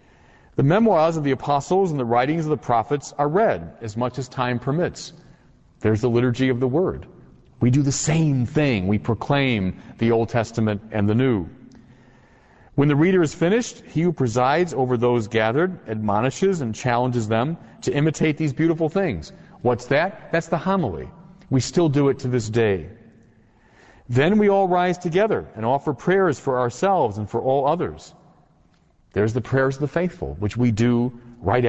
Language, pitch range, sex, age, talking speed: English, 120-160 Hz, male, 40-59, 175 wpm